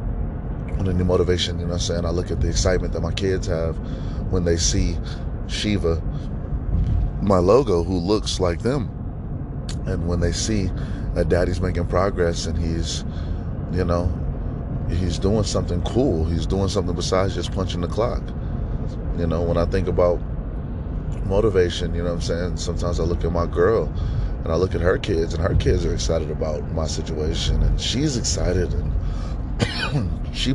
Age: 30-49